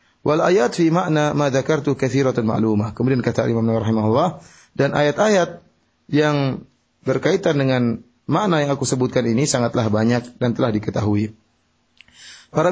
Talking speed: 125 wpm